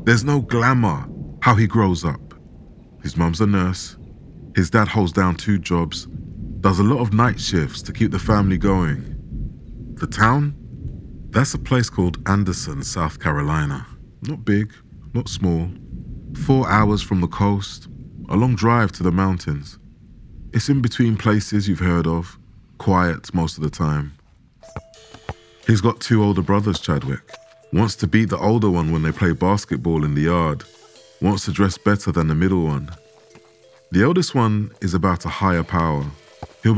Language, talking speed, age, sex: English, 165 wpm, 30-49, male